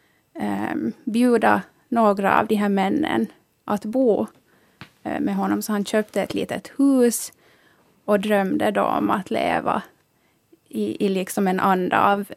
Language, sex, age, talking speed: Finnish, female, 20-39, 135 wpm